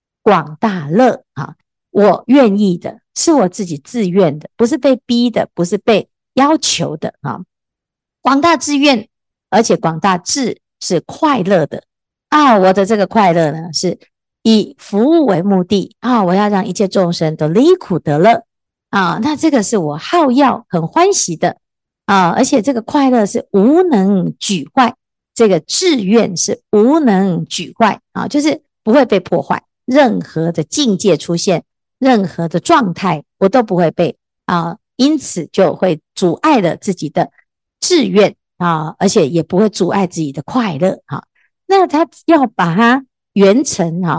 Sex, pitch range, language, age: female, 175-250 Hz, Chinese, 50-69